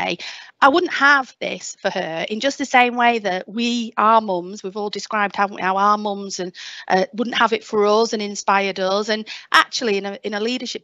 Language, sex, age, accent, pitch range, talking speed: English, female, 40-59, British, 195-240 Hz, 220 wpm